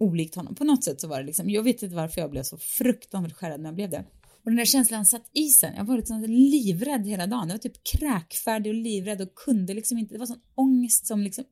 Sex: female